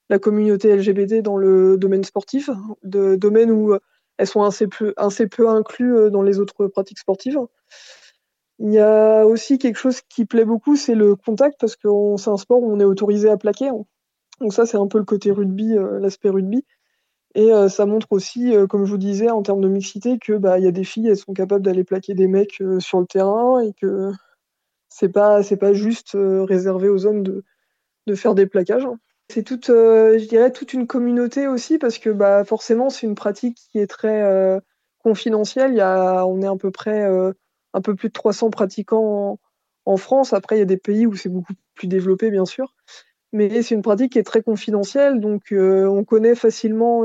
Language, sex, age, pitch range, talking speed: French, female, 20-39, 195-225 Hz, 205 wpm